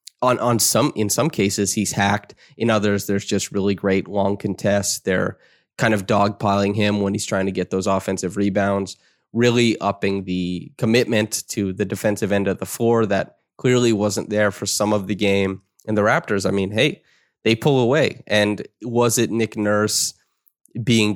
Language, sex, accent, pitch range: English, male, American, 100-115 Hz